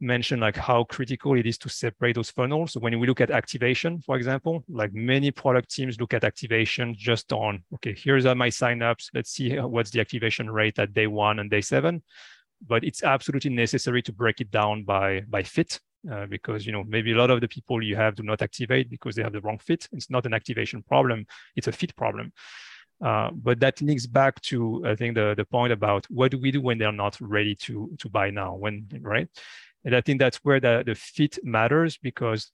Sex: male